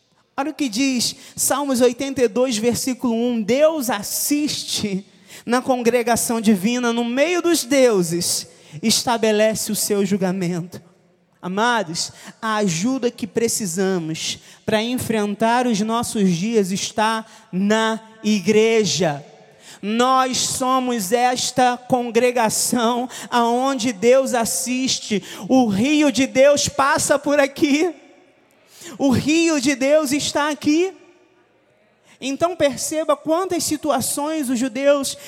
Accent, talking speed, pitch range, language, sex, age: Brazilian, 100 wpm, 220-295 Hz, Portuguese, male, 20-39